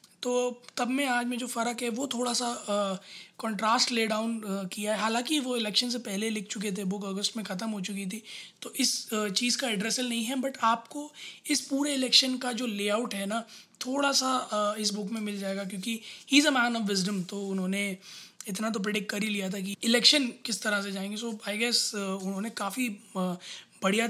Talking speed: 205 wpm